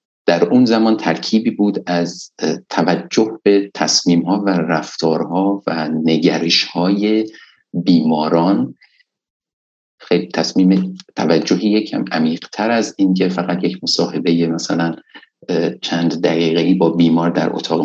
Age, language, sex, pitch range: 50-69, Persian, male, 85-100 Hz